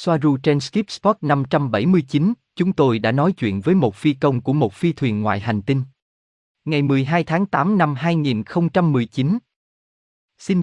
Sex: male